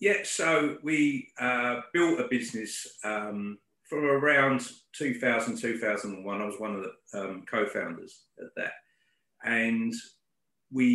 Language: English